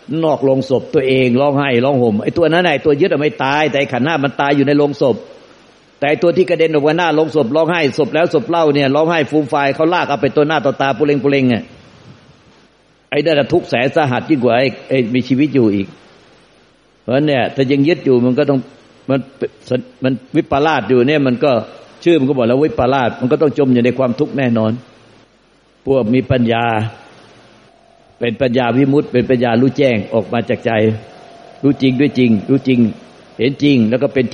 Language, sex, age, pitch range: Thai, male, 60-79, 115-140 Hz